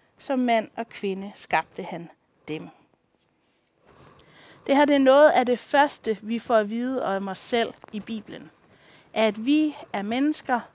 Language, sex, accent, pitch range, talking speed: Danish, female, native, 220-280 Hz, 155 wpm